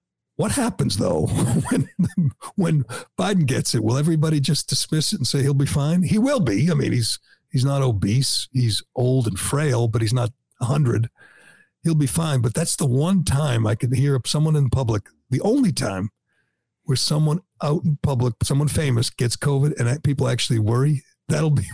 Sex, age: male, 60-79